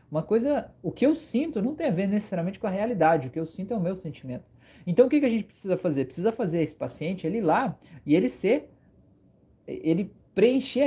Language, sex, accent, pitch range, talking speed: Portuguese, male, Brazilian, 160-220 Hz, 225 wpm